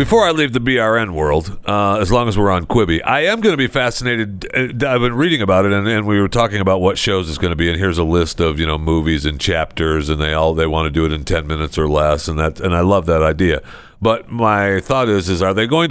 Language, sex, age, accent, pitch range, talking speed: English, male, 50-69, American, 85-115 Hz, 285 wpm